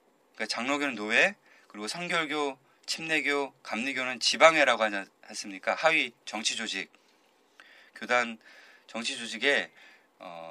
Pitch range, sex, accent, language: 110-155 Hz, male, native, Korean